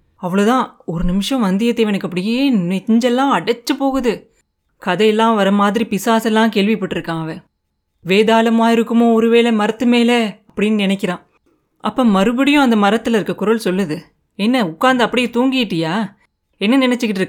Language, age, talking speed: Tamil, 30-49, 120 wpm